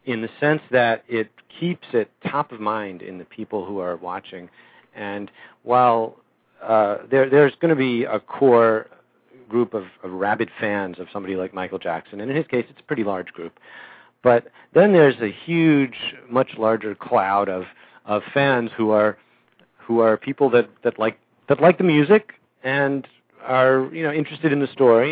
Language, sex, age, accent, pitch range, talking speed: English, male, 40-59, American, 105-130 Hz, 180 wpm